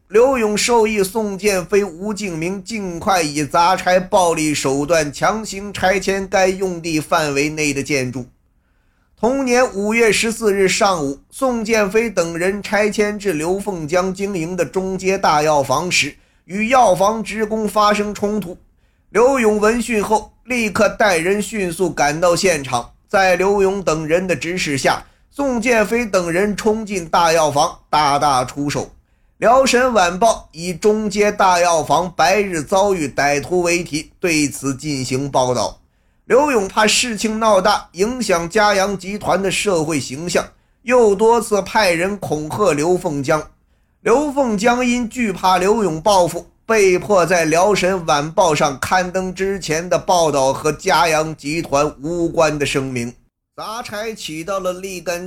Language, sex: Chinese, male